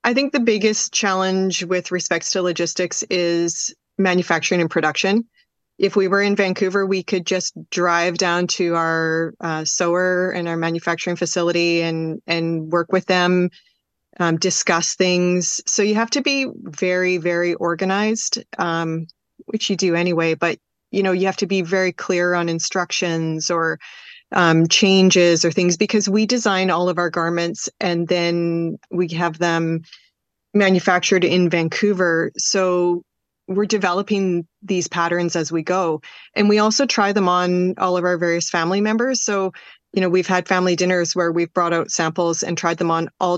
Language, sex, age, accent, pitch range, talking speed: English, female, 30-49, American, 170-190 Hz, 165 wpm